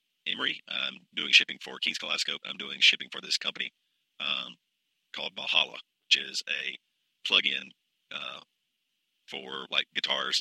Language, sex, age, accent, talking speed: English, male, 40-59, American, 140 wpm